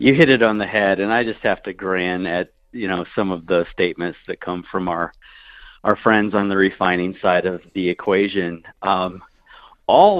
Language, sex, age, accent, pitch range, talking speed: English, male, 50-69, American, 95-125 Hz, 200 wpm